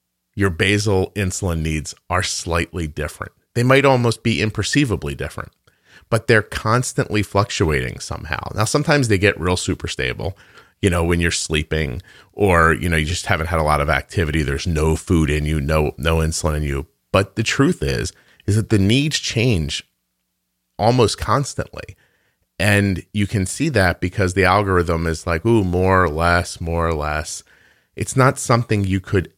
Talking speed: 170 wpm